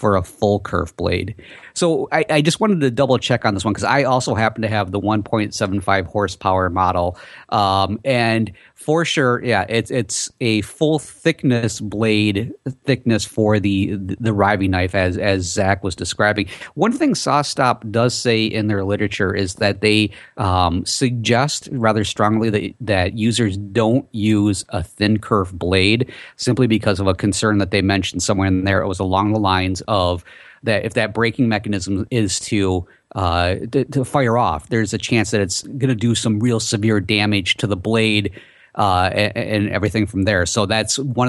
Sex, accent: male, American